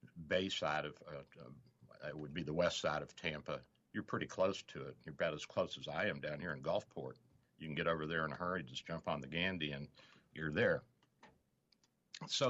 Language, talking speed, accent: English, 220 wpm, American